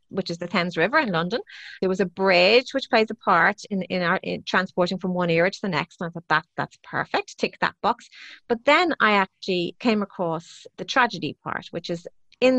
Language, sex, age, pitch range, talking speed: English, female, 30-49, 170-205 Hz, 225 wpm